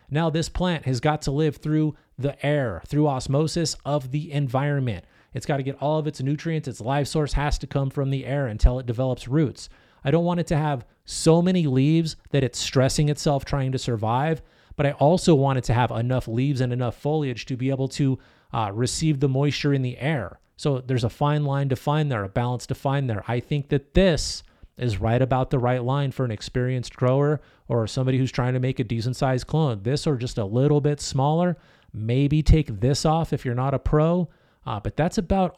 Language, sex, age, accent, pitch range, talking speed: English, male, 30-49, American, 125-155 Hz, 225 wpm